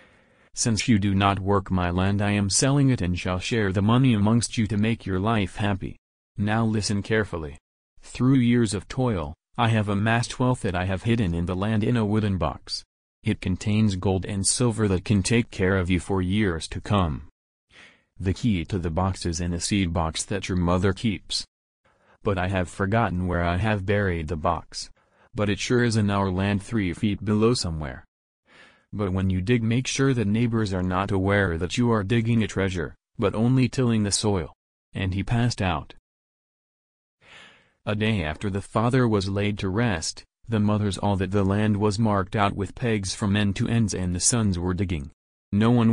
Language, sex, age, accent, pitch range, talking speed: English, male, 30-49, American, 90-110 Hz, 200 wpm